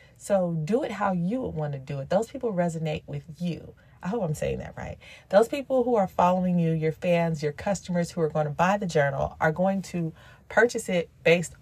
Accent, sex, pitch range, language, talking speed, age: American, female, 155-195 Hz, English, 225 wpm, 30-49